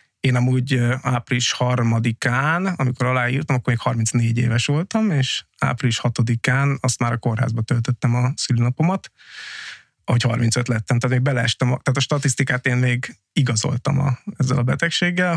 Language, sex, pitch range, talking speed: Hungarian, male, 120-135 Hz, 145 wpm